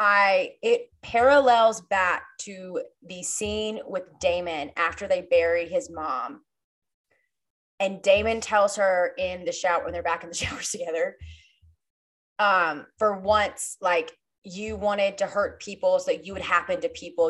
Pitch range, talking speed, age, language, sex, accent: 175-240 Hz, 155 wpm, 20-39, English, female, American